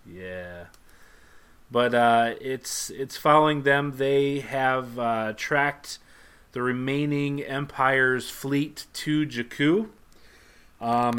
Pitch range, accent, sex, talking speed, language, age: 105-125 Hz, American, male, 95 wpm, English, 30-49